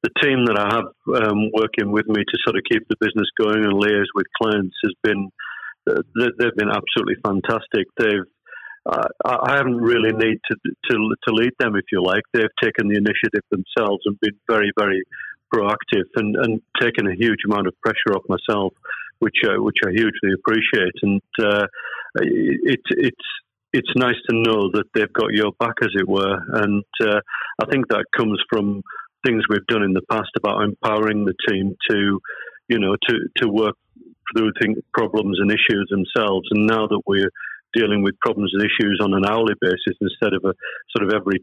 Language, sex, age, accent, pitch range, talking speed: English, male, 50-69, British, 100-110 Hz, 190 wpm